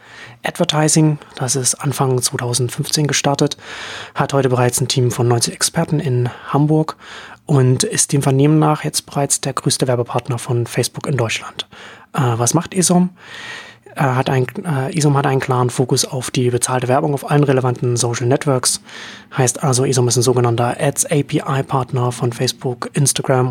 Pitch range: 125-145 Hz